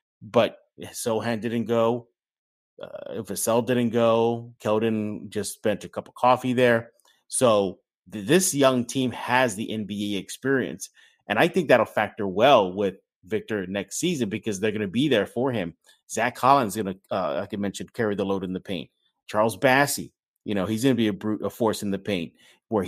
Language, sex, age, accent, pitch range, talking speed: English, male, 30-49, American, 100-135 Hz, 185 wpm